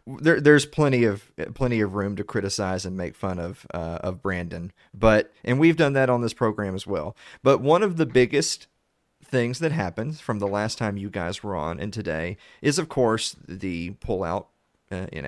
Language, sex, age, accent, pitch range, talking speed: English, male, 40-59, American, 100-135 Hz, 200 wpm